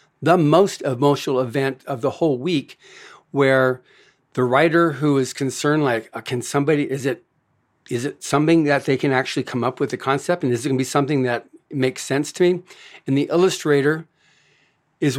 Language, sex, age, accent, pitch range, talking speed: English, male, 50-69, American, 135-155 Hz, 185 wpm